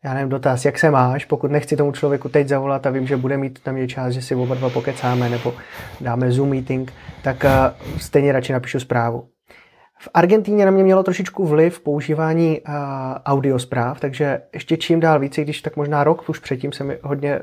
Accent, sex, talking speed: native, male, 200 wpm